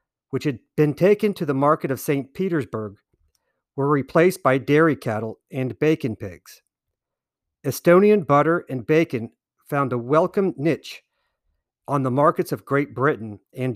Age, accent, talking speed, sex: 50-69, American, 145 wpm, male